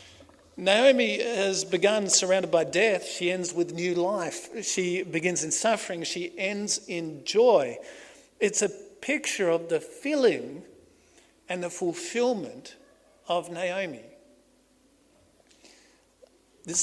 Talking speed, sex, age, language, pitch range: 110 wpm, male, 50-69, English, 175-220 Hz